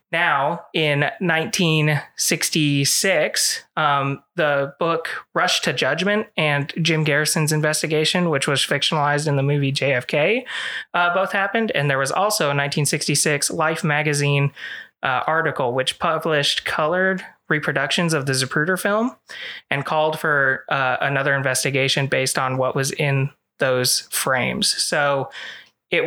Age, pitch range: 20-39, 140-160 Hz